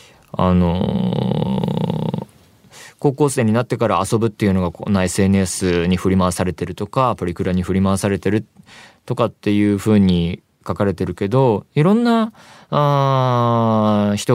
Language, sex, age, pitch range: Japanese, male, 20-39, 95-130 Hz